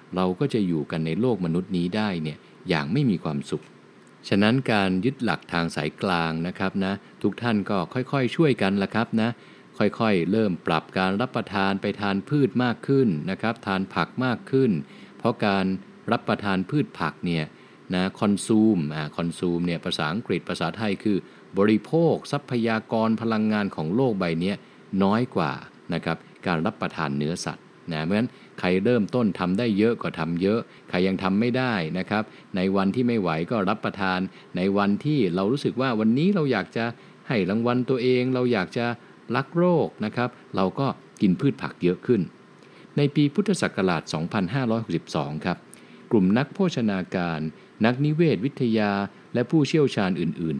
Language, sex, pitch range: English, male, 95-125 Hz